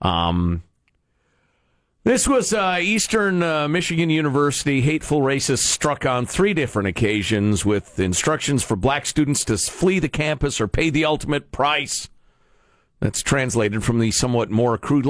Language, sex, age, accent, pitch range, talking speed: English, male, 50-69, American, 105-145 Hz, 145 wpm